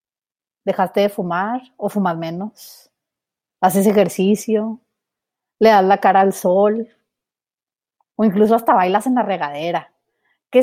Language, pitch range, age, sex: Spanish, 205-265 Hz, 30-49, female